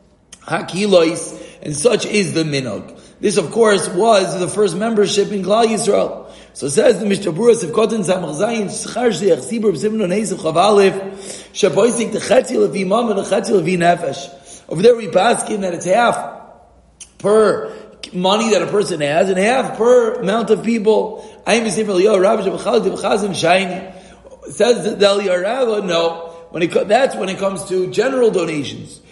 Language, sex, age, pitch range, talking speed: English, male, 30-49, 170-220 Hz, 160 wpm